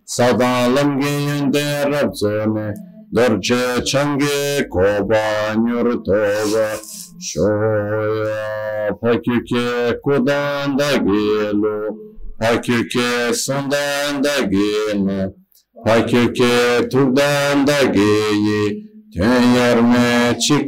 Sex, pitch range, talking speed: male, 105-130 Hz, 60 wpm